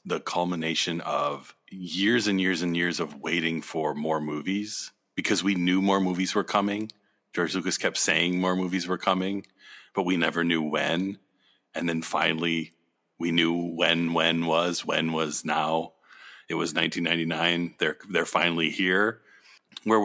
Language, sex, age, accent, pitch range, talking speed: English, male, 40-59, American, 85-105 Hz, 155 wpm